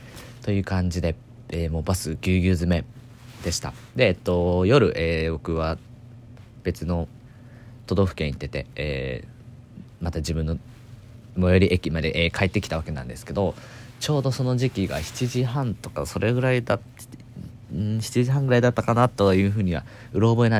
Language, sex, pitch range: Japanese, male, 85-120 Hz